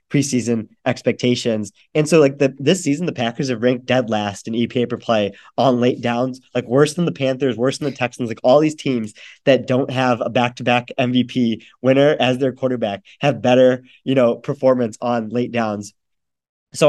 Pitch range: 115-135 Hz